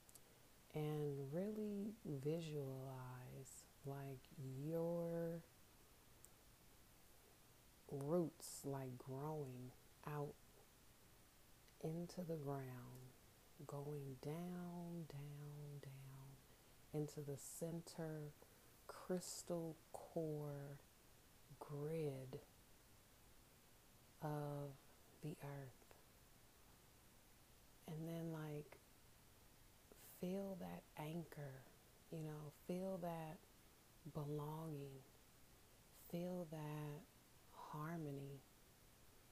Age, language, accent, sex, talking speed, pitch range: 40-59, English, American, female, 60 wpm, 135-165 Hz